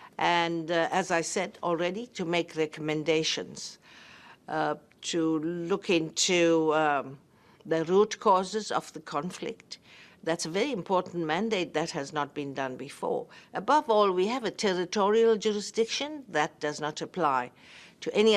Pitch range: 155-195 Hz